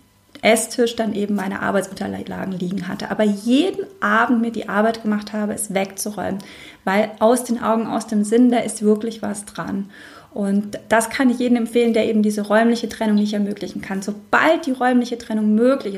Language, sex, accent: German, female, German